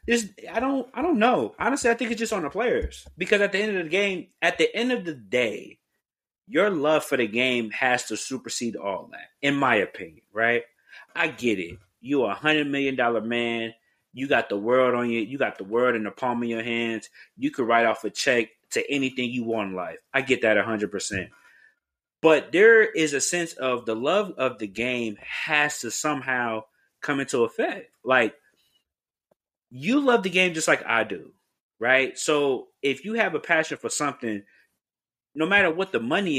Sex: male